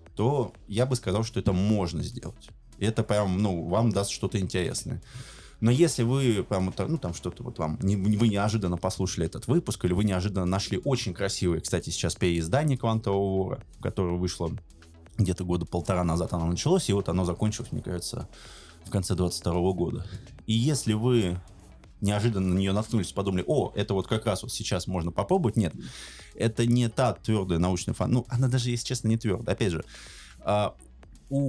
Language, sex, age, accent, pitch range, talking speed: Russian, male, 20-39, native, 90-120 Hz, 175 wpm